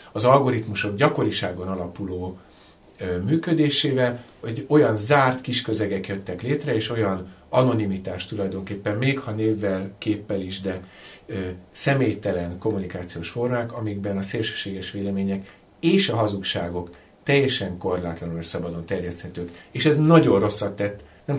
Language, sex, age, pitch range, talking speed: Hungarian, male, 50-69, 95-130 Hz, 125 wpm